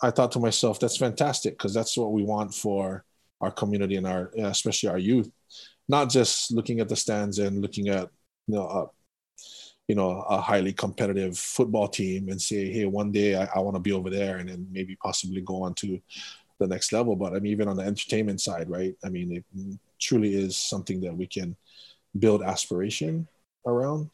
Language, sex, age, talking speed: English, male, 20-39, 200 wpm